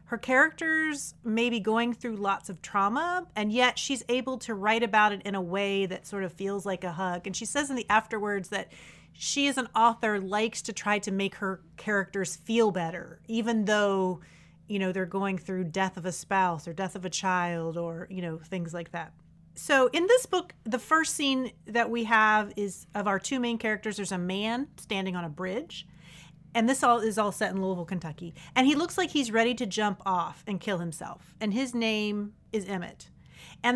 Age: 30-49